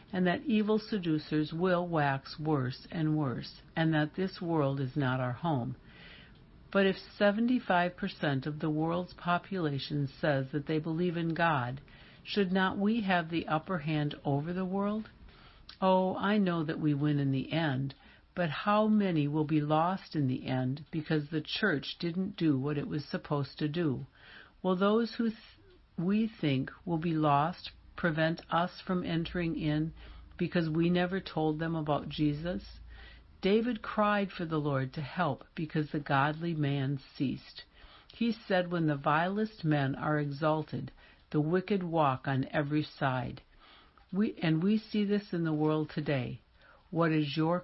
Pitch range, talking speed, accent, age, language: 140-180 Hz, 160 wpm, American, 60-79, English